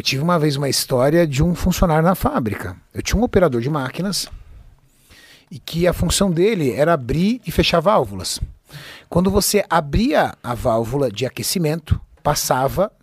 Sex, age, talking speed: male, 60-79, 160 wpm